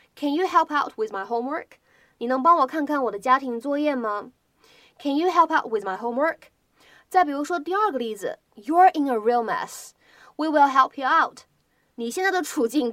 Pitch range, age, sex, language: 240-330 Hz, 20-39, female, Chinese